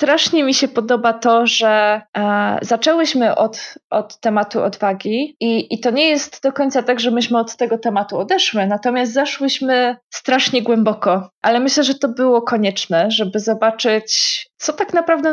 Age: 20-39